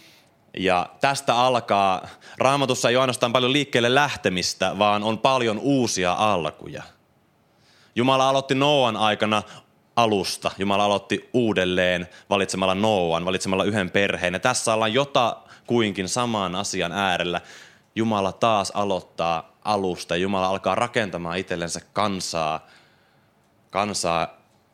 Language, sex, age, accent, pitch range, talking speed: Finnish, male, 20-39, native, 85-110 Hz, 110 wpm